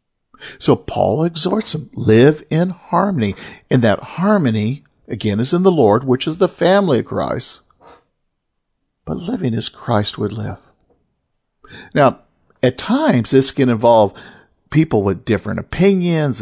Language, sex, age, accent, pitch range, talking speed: English, male, 50-69, American, 110-155 Hz, 135 wpm